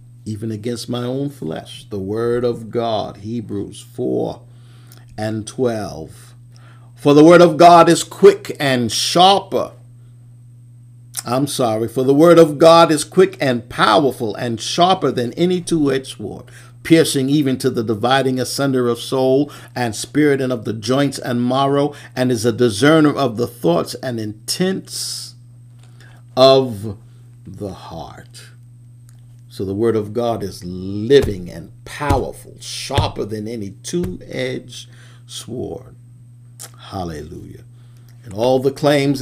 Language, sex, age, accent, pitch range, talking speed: English, male, 50-69, American, 115-130 Hz, 130 wpm